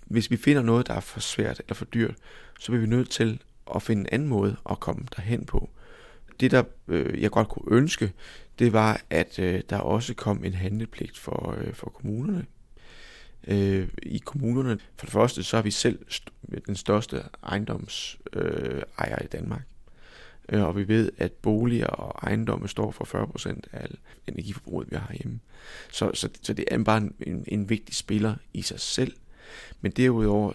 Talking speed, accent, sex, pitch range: 185 wpm, native, male, 100-115 Hz